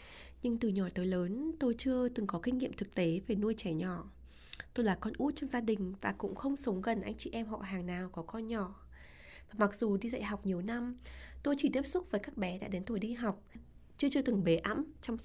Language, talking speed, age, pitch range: Vietnamese, 250 wpm, 20-39, 180-245 Hz